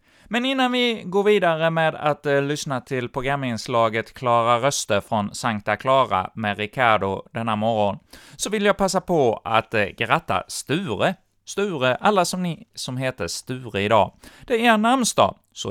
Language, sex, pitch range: Swedish, male, 110-155 Hz